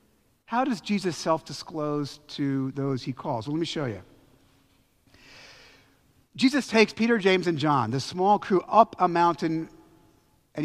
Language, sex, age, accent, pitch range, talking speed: English, male, 50-69, American, 155-225 Hz, 145 wpm